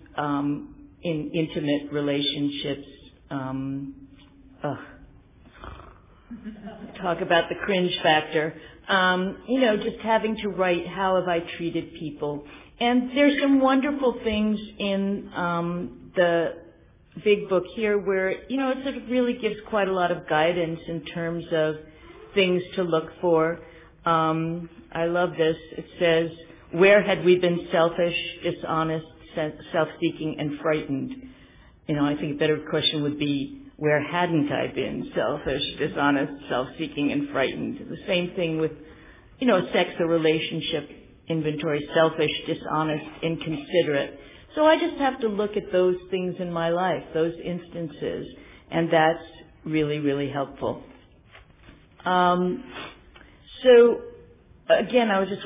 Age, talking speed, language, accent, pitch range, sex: 50-69, 135 wpm, English, American, 155-190 Hz, female